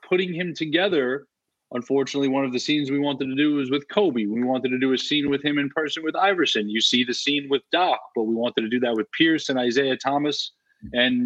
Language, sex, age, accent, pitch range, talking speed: English, male, 30-49, American, 125-155 Hz, 240 wpm